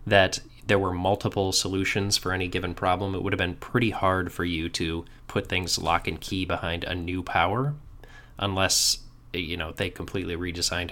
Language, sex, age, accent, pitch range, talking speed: English, male, 20-39, American, 90-110 Hz, 180 wpm